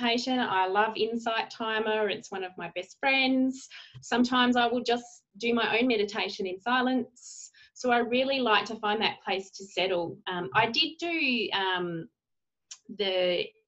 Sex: female